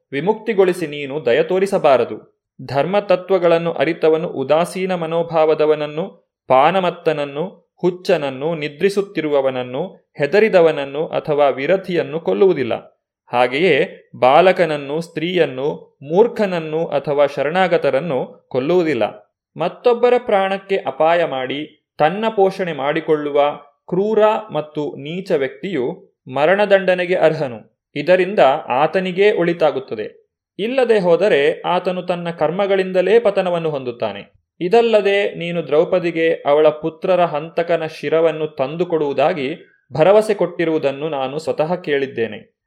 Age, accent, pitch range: 30-49, native, 150-190 Hz